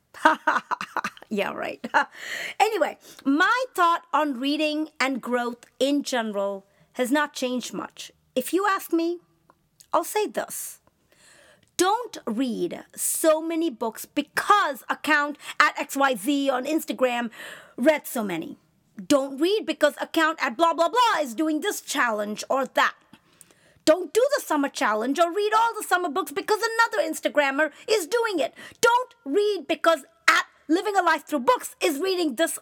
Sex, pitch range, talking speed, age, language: female, 265-365 Hz, 145 wpm, 40-59, English